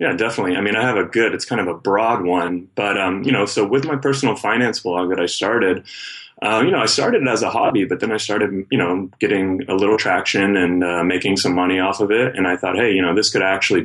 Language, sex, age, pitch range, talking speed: English, male, 20-39, 90-100 Hz, 270 wpm